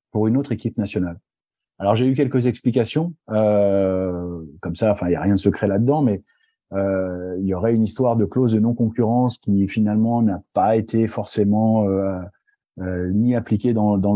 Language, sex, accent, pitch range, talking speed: French, male, French, 100-120 Hz, 185 wpm